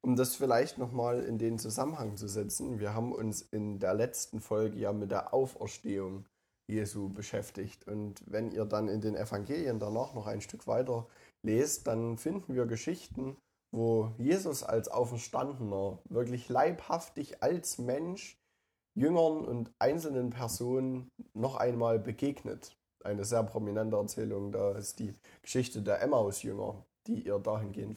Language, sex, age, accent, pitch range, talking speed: German, male, 10-29, German, 105-125 Hz, 145 wpm